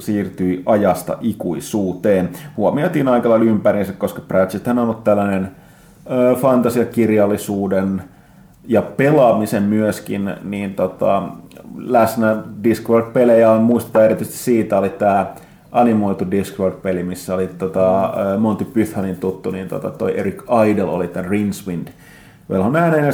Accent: native